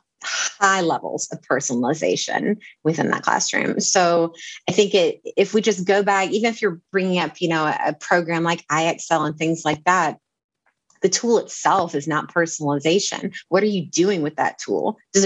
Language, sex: English, female